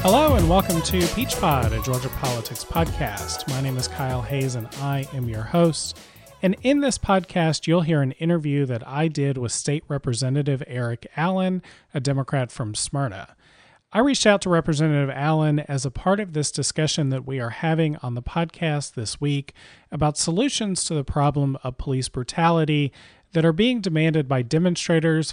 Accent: American